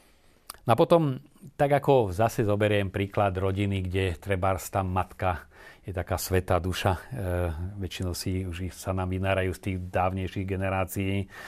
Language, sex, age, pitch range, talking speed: Slovak, male, 40-59, 95-110 Hz, 135 wpm